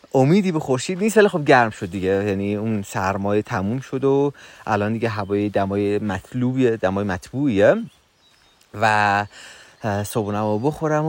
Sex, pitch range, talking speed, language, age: male, 105-145 Hz, 140 wpm, Persian, 30-49